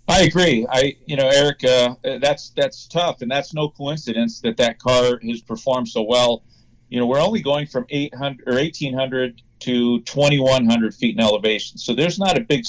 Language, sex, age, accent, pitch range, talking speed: English, male, 40-59, American, 120-140 Hz, 190 wpm